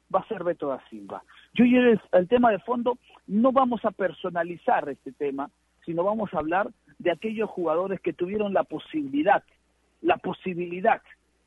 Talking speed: 160 wpm